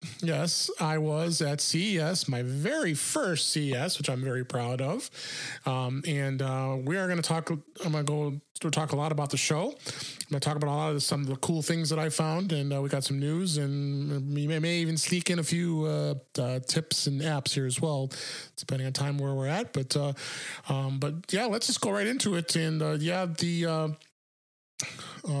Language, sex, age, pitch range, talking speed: English, male, 30-49, 140-160 Hz, 215 wpm